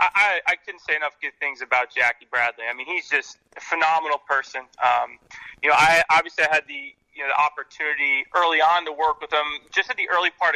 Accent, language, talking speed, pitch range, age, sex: American, English, 225 wpm, 150-185 Hz, 30-49, male